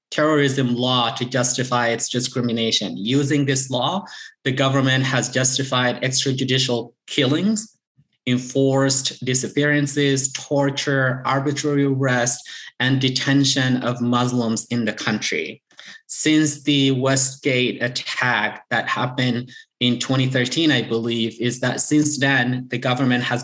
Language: English